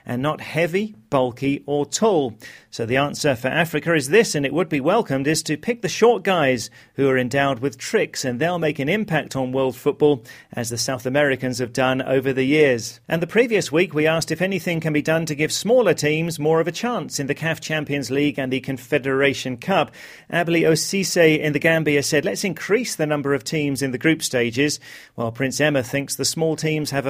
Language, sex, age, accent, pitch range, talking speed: English, male, 40-59, British, 130-160 Hz, 215 wpm